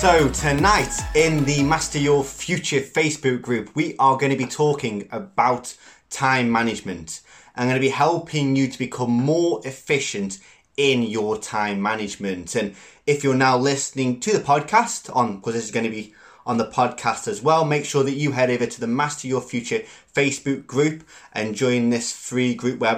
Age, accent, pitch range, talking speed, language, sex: 20-39, British, 110-145 Hz, 190 wpm, English, male